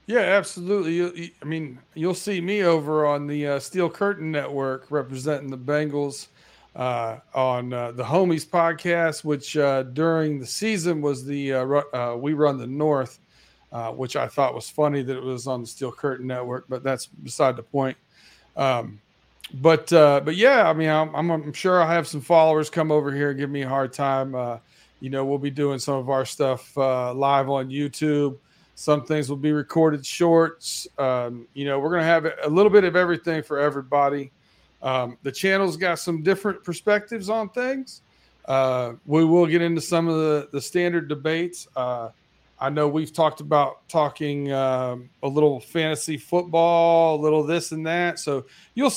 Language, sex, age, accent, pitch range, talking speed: English, male, 40-59, American, 135-165 Hz, 185 wpm